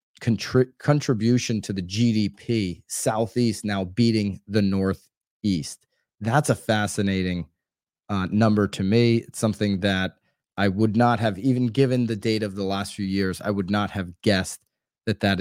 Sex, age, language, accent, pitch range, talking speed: male, 30-49, English, American, 100-120 Hz, 150 wpm